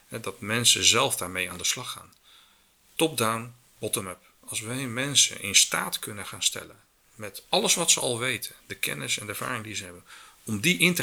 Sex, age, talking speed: male, 40-59, 195 wpm